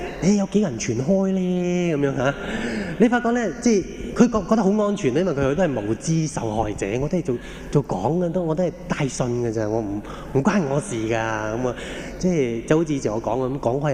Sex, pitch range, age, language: male, 130-185 Hz, 20-39, Japanese